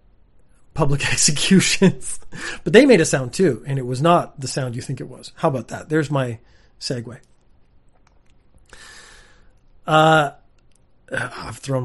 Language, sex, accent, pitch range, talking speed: English, male, American, 115-155 Hz, 135 wpm